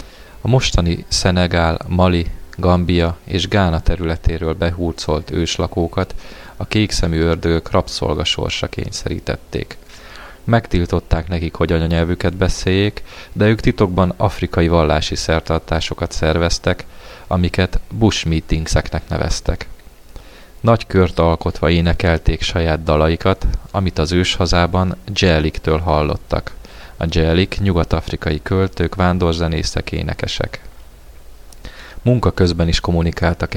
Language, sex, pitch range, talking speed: Hungarian, male, 80-95 Hz, 95 wpm